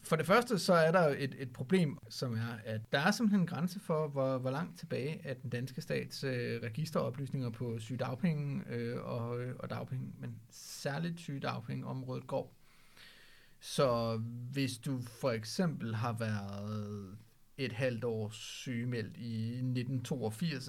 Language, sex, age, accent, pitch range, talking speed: Danish, male, 40-59, native, 115-145 Hz, 150 wpm